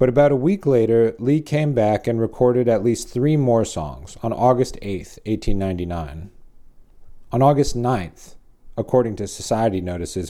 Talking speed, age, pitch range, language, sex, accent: 150 wpm, 40-59, 90-120 Hz, English, male, American